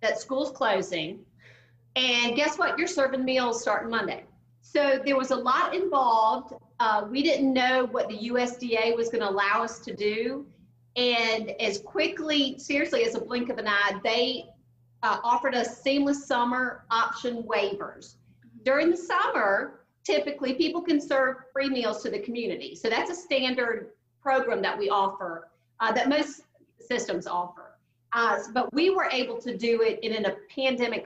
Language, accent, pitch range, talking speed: English, American, 210-290 Hz, 165 wpm